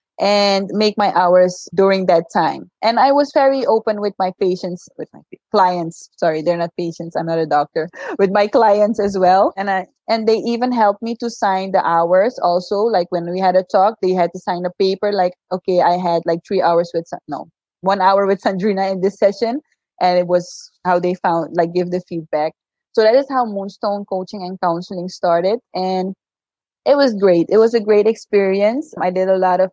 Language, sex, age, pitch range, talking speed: English, female, 20-39, 180-205 Hz, 210 wpm